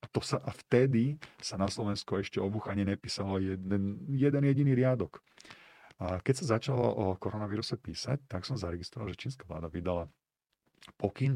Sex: male